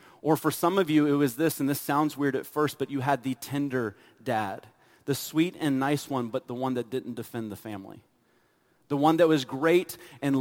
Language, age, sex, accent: English, 30-49, male, American